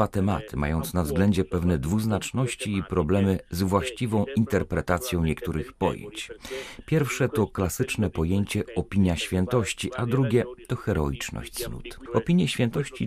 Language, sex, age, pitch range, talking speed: Polish, male, 40-59, 90-120 Hz, 120 wpm